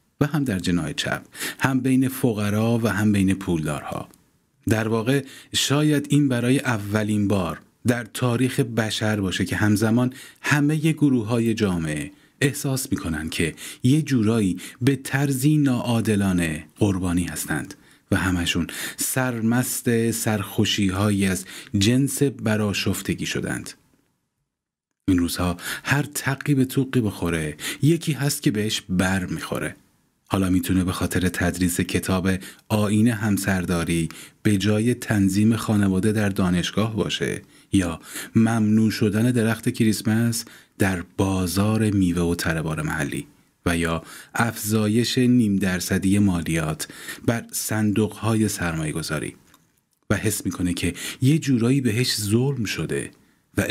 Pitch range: 95-125 Hz